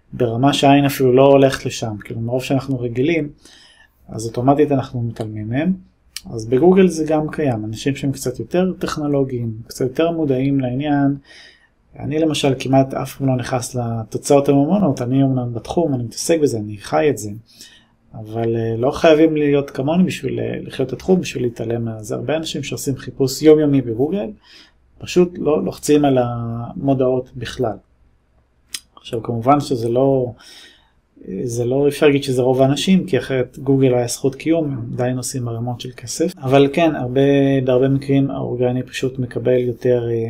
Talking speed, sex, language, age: 155 wpm, male, Hebrew, 20-39